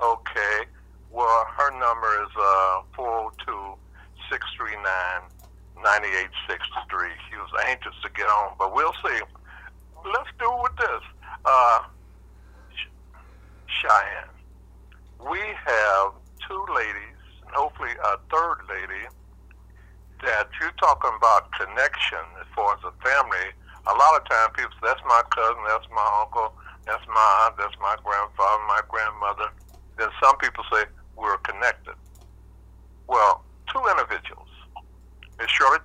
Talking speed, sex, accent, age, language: 120 wpm, male, American, 60-79, English